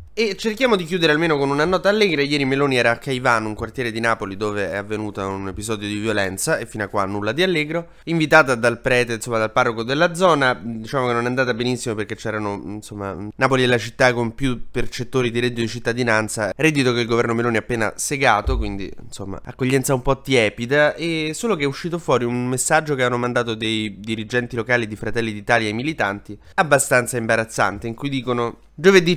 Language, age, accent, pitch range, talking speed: Italian, 20-39, native, 115-145 Hz, 205 wpm